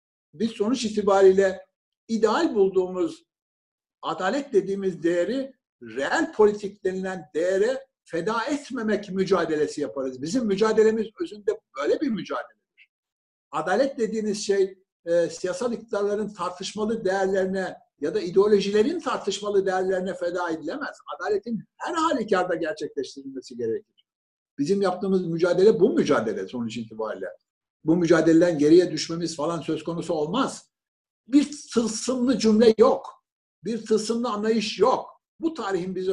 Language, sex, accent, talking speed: Turkish, male, native, 115 wpm